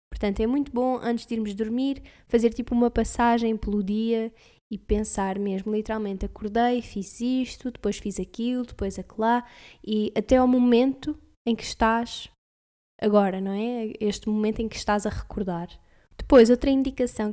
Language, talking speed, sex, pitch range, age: Portuguese, 165 wpm, female, 210-240 Hz, 10-29